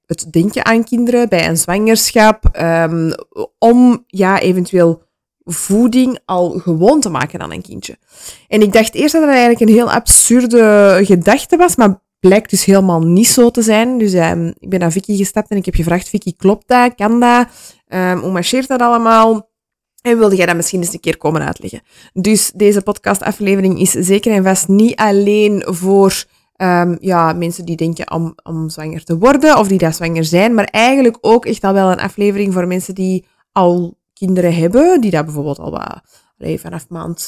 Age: 20-39